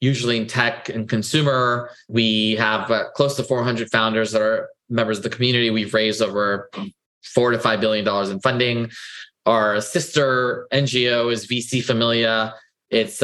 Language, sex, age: English, male, 20-39